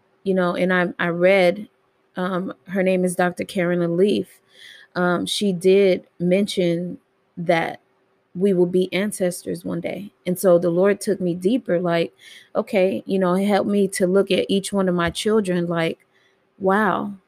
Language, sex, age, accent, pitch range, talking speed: English, female, 20-39, American, 180-200 Hz, 165 wpm